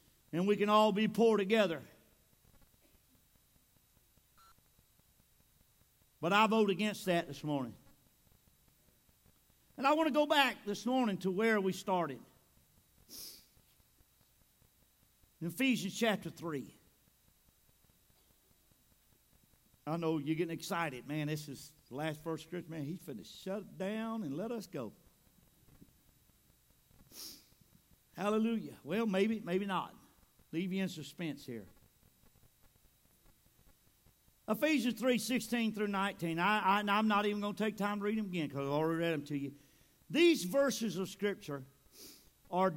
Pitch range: 145-210 Hz